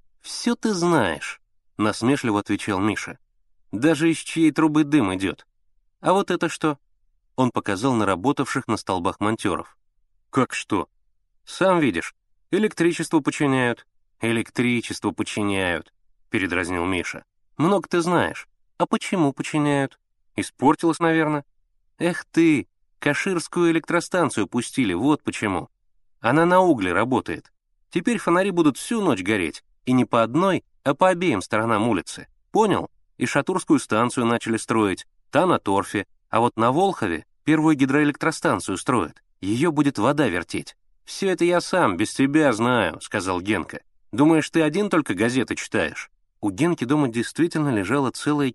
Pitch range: 110-165 Hz